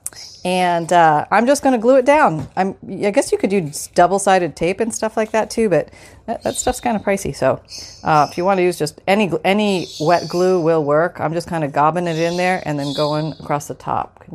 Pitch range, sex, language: 150-205 Hz, female, English